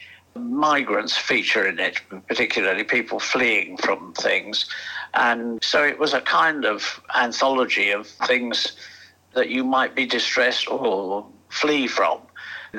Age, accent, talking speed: 60-79, British, 130 wpm